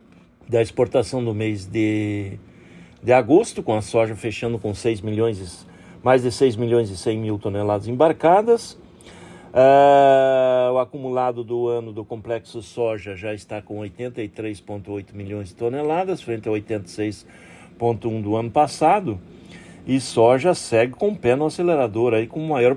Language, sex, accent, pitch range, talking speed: Portuguese, male, Brazilian, 115-155 Hz, 150 wpm